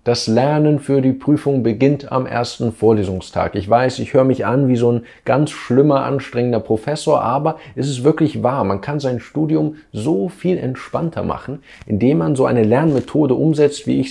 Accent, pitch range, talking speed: German, 110-145 Hz, 185 wpm